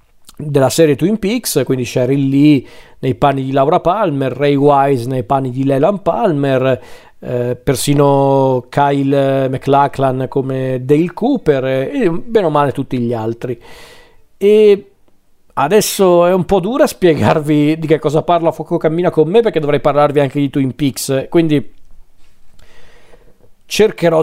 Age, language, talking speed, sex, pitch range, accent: 40-59, Italian, 145 wpm, male, 135-175 Hz, native